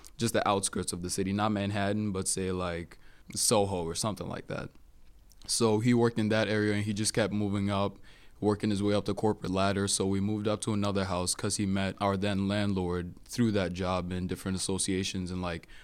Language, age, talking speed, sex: English, 20-39, 210 wpm, male